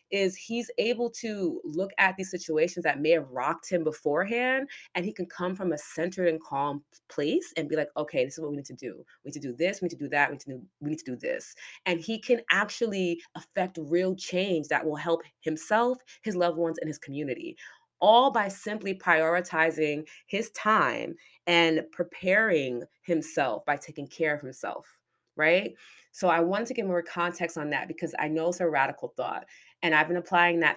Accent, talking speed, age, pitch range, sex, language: American, 210 wpm, 20-39, 150-190 Hz, female, English